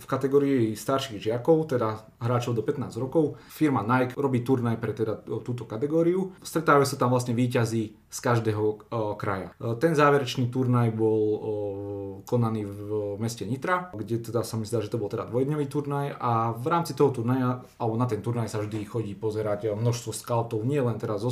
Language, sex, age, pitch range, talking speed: Slovak, male, 30-49, 110-135 Hz, 175 wpm